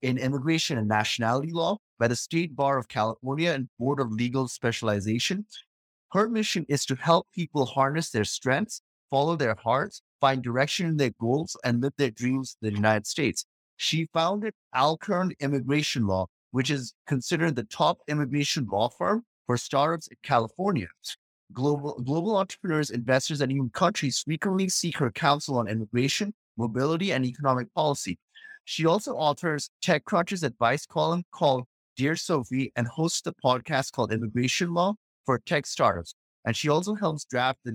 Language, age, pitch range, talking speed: English, 30-49, 120-165 Hz, 160 wpm